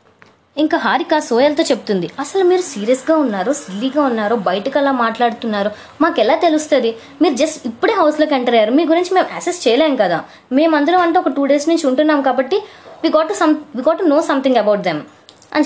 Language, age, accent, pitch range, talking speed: Telugu, 20-39, native, 240-315 Hz, 170 wpm